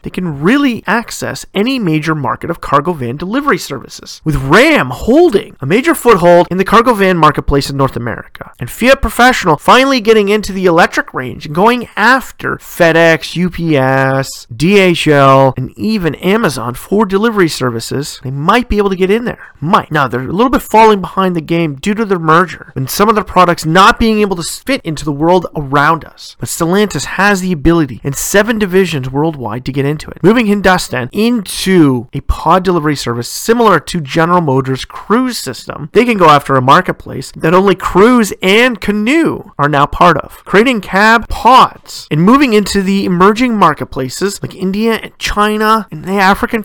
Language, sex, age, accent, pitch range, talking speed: English, male, 30-49, American, 150-220 Hz, 185 wpm